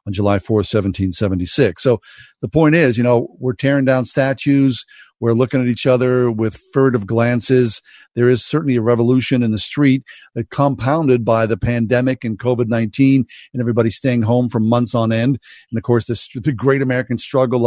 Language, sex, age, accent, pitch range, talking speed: English, male, 50-69, American, 120-145 Hz, 180 wpm